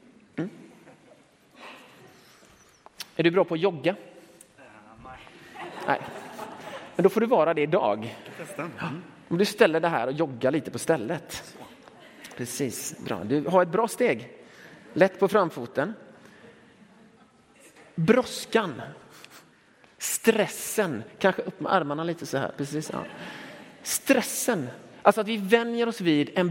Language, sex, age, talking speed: Swedish, male, 30-49, 125 wpm